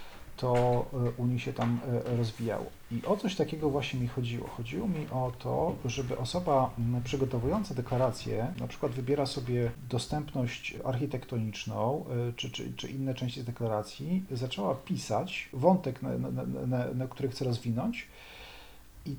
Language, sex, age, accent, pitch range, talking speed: Polish, male, 40-59, native, 120-140 Hz, 140 wpm